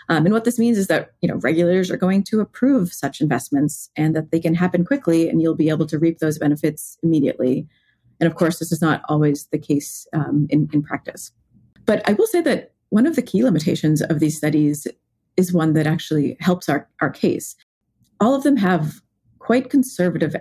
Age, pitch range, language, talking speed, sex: 30-49, 150-180 Hz, English, 210 wpm, female